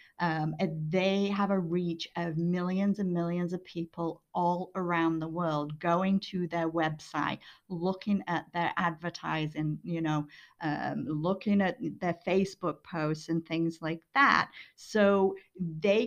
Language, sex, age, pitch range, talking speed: English, female, 50-69, 165-200 Hz, 140 wpm